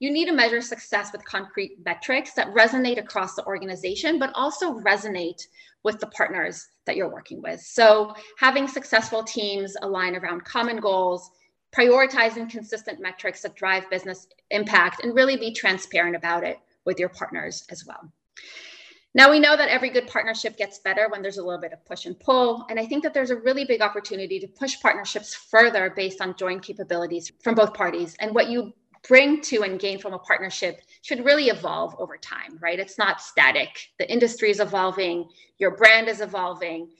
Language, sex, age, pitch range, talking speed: English, female, 30-49, 190-240 Hz, 185 wpm